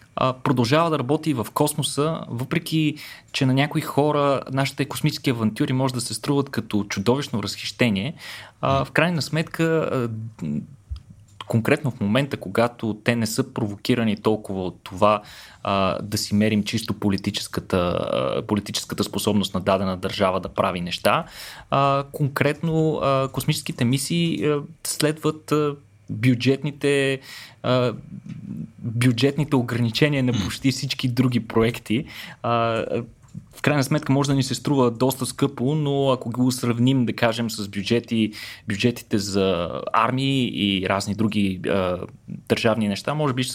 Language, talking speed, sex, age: Bulgarian, 125 wpm, male, 20-39